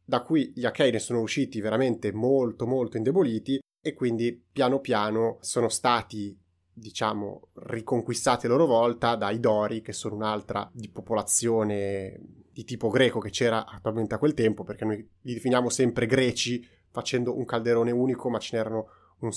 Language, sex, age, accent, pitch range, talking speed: Italian, male, 30-49, native, 100-125 Hz, 160 wpm